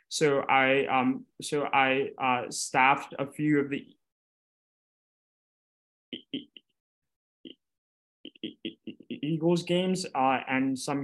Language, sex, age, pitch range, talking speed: English, male, 20-39, 125-140 Hz, 110 wpm